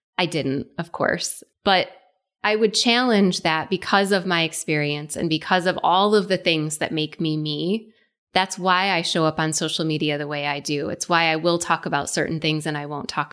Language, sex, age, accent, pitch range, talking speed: English, female, 20-39, American, 155-190 Hz, 215 wpm